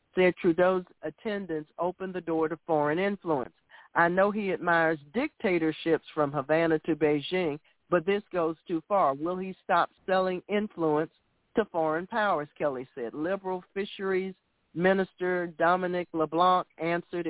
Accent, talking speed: American, 135 wpm